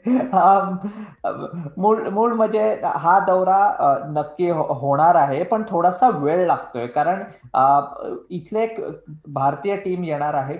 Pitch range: 155-205 Hz